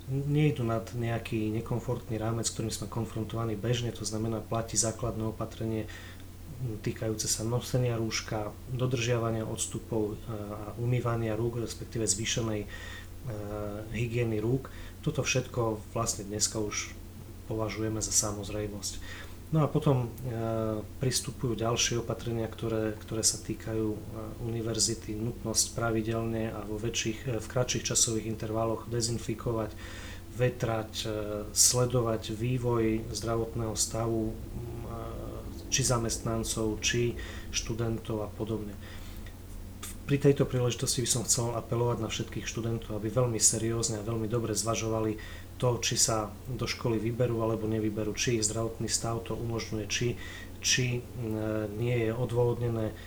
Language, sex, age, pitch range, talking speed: Slovak, male, 30-49, 105-115 Hz, 120 wpm